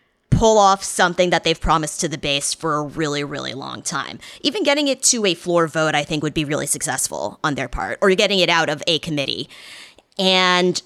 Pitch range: 160-200 Hz